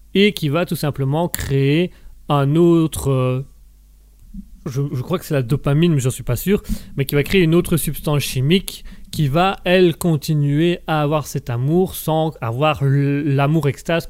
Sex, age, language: male, 30-49, French